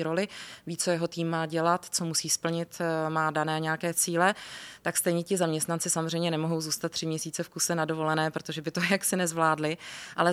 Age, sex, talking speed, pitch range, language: 20-39, female, 190 wpm, 160-170 Hz, Czech